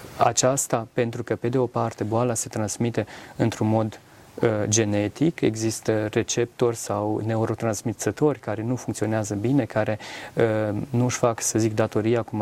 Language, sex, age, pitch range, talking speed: Romanian, male, 30-49, 105-125 Hz, 145 wpm